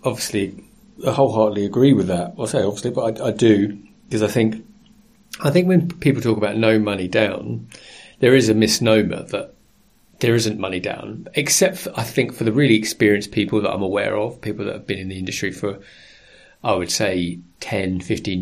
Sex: male